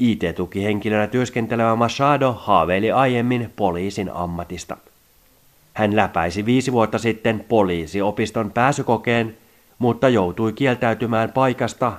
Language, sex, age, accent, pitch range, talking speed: Finnish, male, 30-49, native, 95-120 Hz, 90 wpm